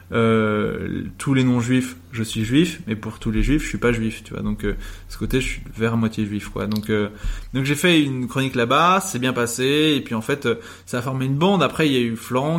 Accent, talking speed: French, 270 wpm